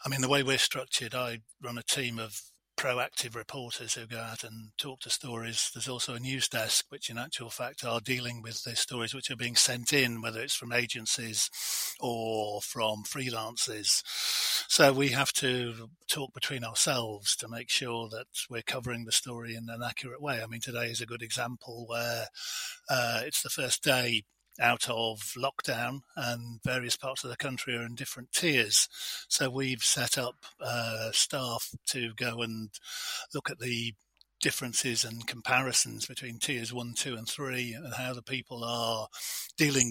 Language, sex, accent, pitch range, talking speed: English, male, British, 115-130 Hz, 175 wpm